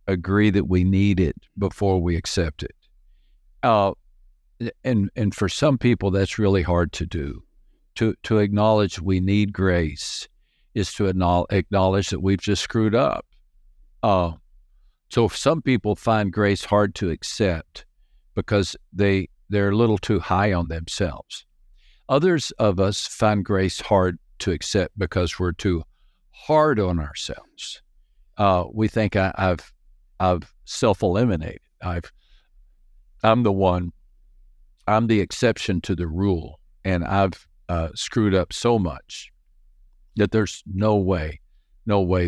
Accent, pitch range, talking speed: American, 90-105 Hz, 140 wpm